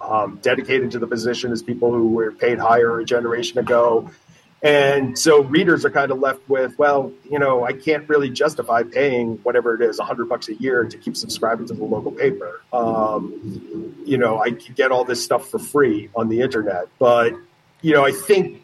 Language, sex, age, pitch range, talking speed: English, male, 30-49, 120-140 Hz, 205 wpm